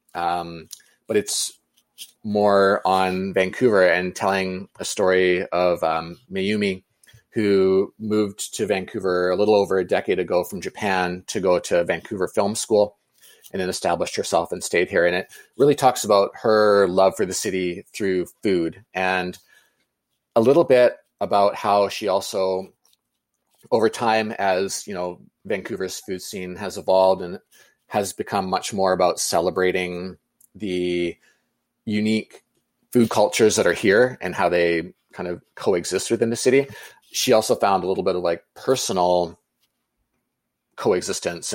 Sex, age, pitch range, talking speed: male, 30-49, 90-105 Hz, 145 wpm